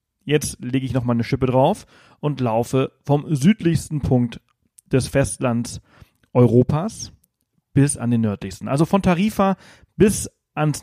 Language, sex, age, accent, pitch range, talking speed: German, male, 40-59, German, 120-150 Hz, 135 wpm